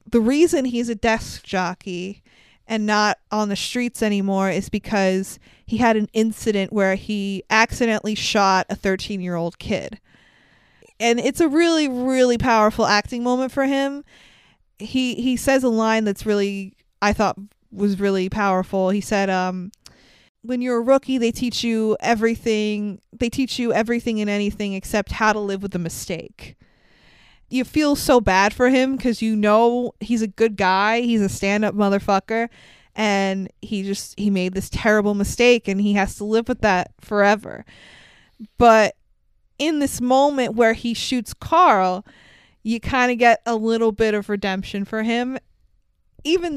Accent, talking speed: American, 160 wpm